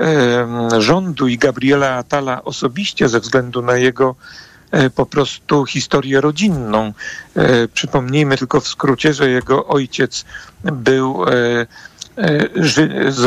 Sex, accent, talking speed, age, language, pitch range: male, native, 100 wpm, 50-69, Polish, 130-160 Hz